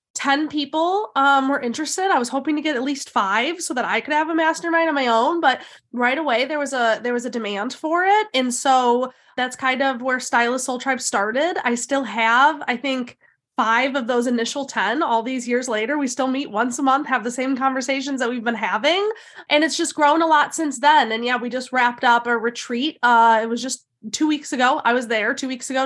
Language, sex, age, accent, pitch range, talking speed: English, female, 20-39, American, 220-275 Hz, 235 wpm